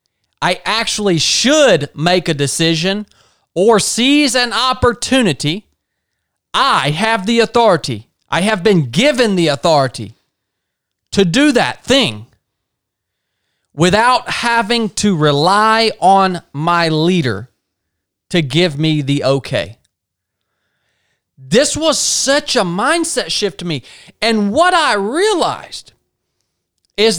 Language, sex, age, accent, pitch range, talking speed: English, male, 40-59, American, 160-245 Hz, 110 wpm